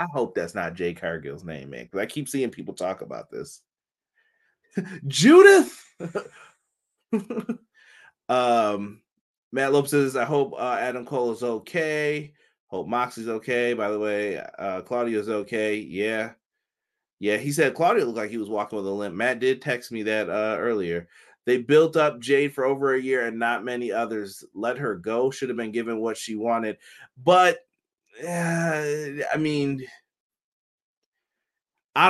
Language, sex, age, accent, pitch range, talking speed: English, male, 30-49, American, 115-150 Hz, 155 wpm